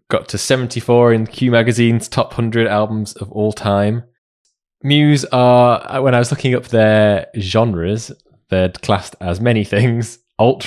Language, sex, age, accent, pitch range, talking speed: English, male, 20-39, British, 90-120 Hz, 155 wpm